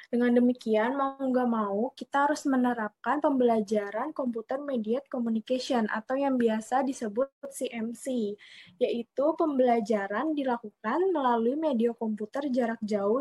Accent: native